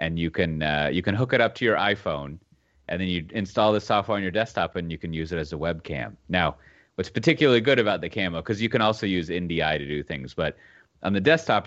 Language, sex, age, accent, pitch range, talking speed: English, male, 30-49, American, 80-100 Hz, 250 wpm